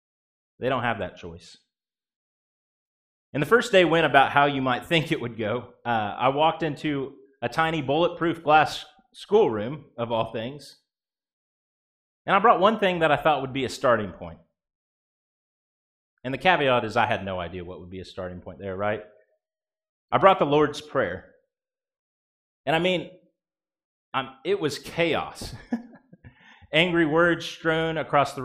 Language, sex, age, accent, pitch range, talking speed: English, male, 30-49, American, 120-165 Hz, 160 wpm